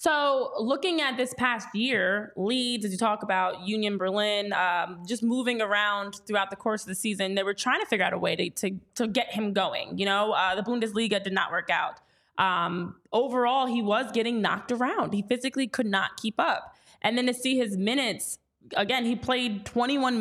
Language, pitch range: English, 205-265 Hz